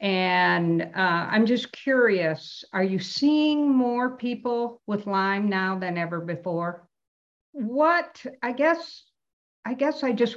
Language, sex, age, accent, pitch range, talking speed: English, female, 50-69, American, 155-200 Hz, 135 wpm